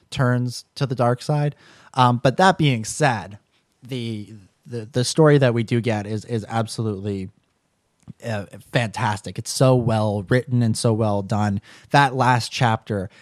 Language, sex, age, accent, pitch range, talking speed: English, male, 20-39, American, 100-125 Hz, 155 wpm